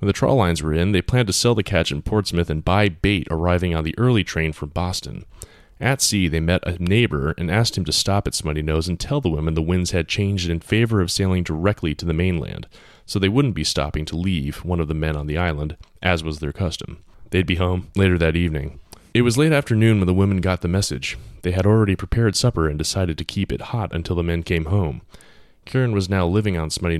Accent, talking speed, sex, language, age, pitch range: American, 245 wpm, male, English, 30-49, 80-100 Hz